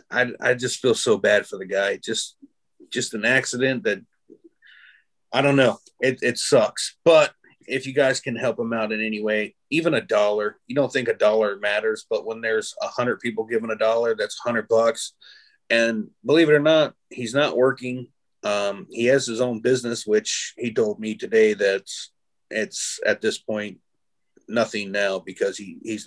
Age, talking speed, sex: 30-49, 185 wpm, male